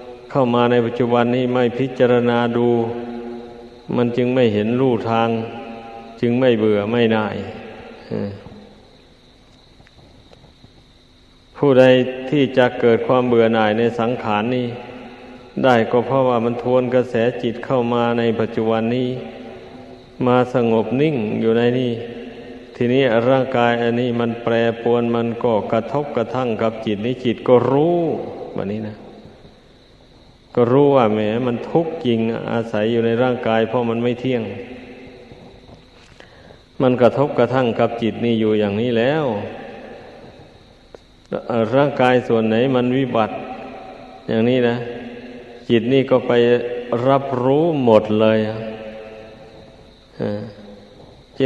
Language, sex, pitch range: Thai, male, 115-125 Hz